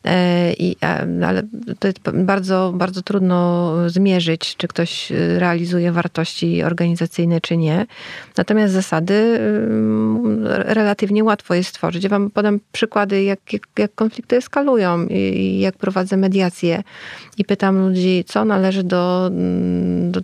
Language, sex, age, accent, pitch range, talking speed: Polish, female, 30-49, native, 170-195 Hz, 125 wpm